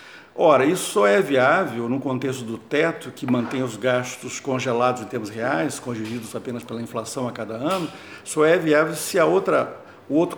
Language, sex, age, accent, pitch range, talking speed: Portuguese, male, 50-69, Brazilian, 125-155 Hz, 185 wpm